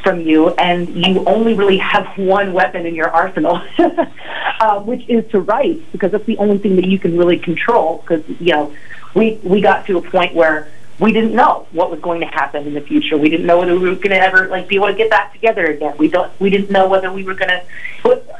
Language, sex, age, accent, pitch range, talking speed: English, female, 30-49, American, 170-215 Hz, 245 wpm